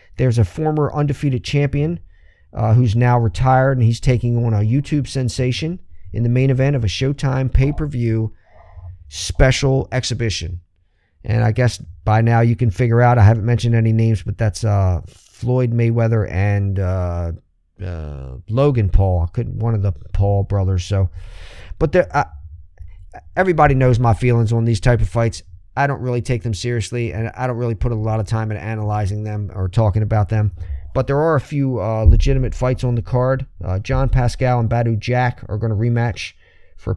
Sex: male